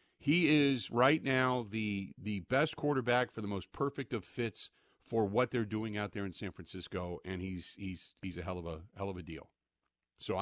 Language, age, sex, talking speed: English, 50-69, male, 205 wpm